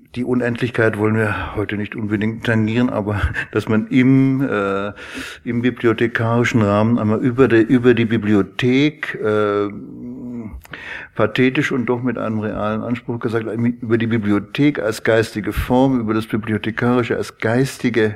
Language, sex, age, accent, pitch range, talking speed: German, male, 60-79, German, 105-120 Hz, 140 wpm